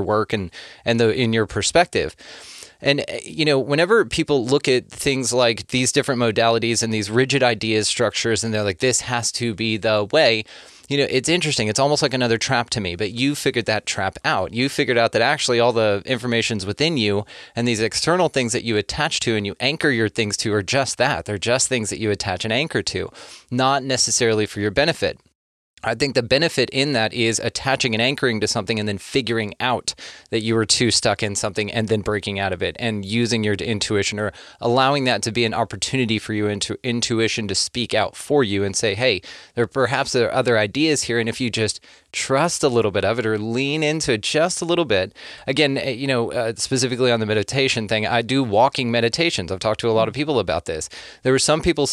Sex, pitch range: male, 110-130 Hz